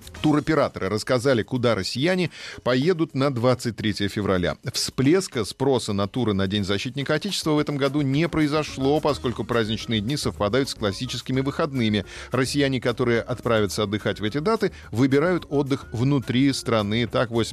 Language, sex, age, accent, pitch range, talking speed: Russian, male, 40-59, native, 105-135 Hz, 135 wpm